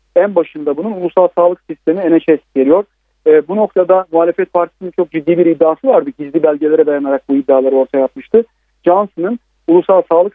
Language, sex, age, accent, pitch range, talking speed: Turkish, male, 40-59, native, 155-195 Hz, 160 wpm